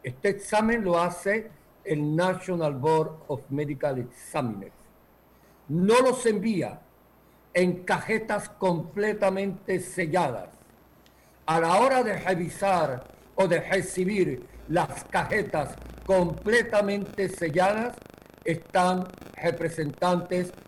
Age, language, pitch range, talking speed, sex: 50-69, Spanish, 160-205 Hz, 90 wpm, male